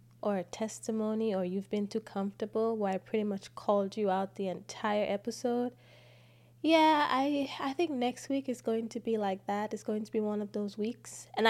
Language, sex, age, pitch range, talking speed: English, female, 20-39, 180-225 Hz, 205 wpm